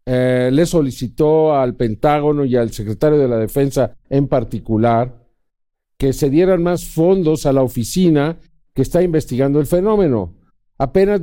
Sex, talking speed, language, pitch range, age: male, 145 wpm, Spanish, 140-175 Hz, 50-69